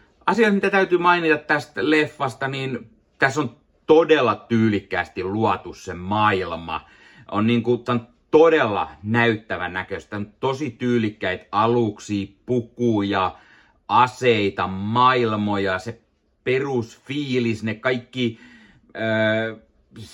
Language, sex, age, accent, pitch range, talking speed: Finnish, male, 30-49, native, 100-120 Hz, 90 wpm